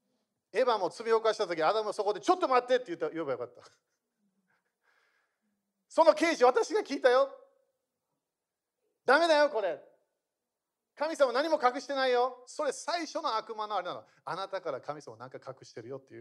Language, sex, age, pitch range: Japanese, male, 40-59, 155-255 Hz